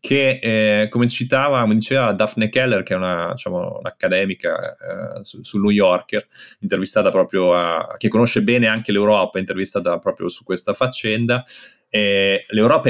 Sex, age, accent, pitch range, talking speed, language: male, 30-49, native, 90-115 Hz, 150 wpm, Italian